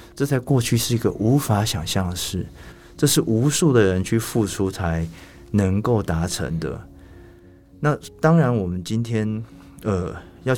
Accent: native